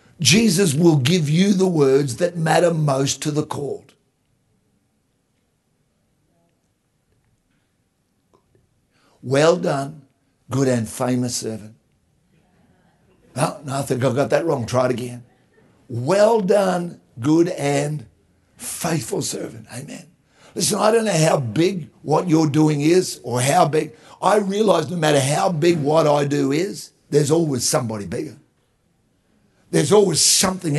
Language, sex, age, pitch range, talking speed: English, male, 60-79, 125-175 Hz, 130 wpm